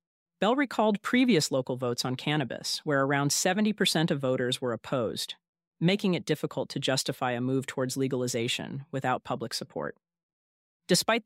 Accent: American